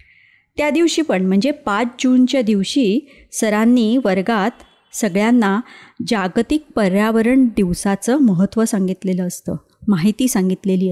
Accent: native